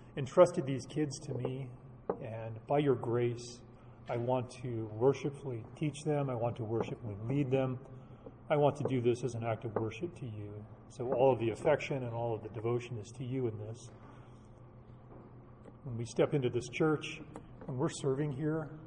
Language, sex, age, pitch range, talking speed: English, male, 30-49, 115-140 Hz, 185 wpm